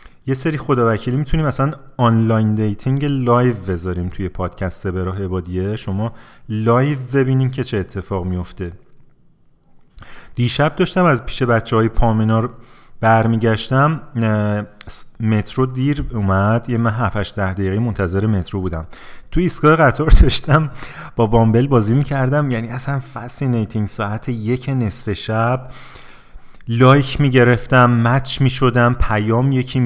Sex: male